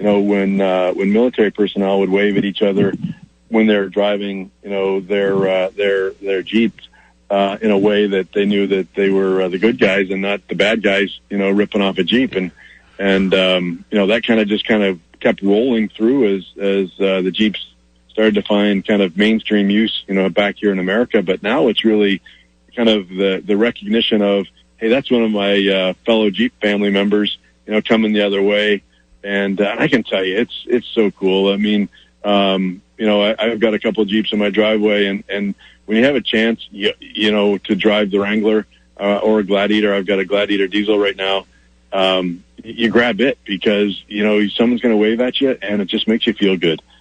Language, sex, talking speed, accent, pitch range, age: English, male, 220 wpm, American, 95-105 Hz, 40-59